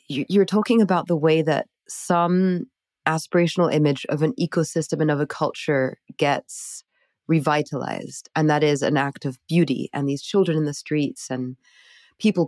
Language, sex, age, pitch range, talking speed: English, female, 20-39, 145-170 Hz, 160 wpm